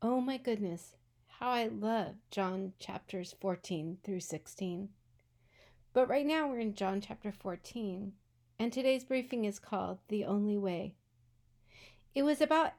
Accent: American